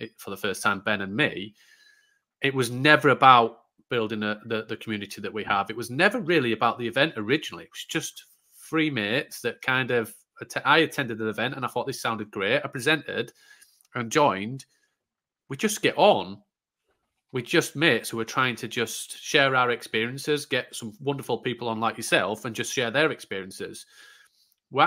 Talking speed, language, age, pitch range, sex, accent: 190 wpm, English, 30-49, 105-135 Hz, male, British